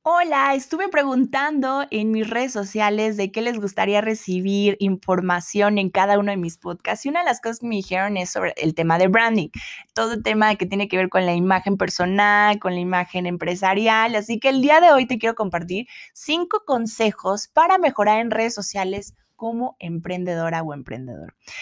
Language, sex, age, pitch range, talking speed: Spanish, female, 20-39, 180-225 Hz, 190 wpm